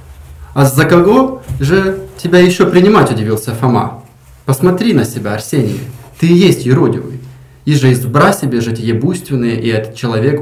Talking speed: 150 wpm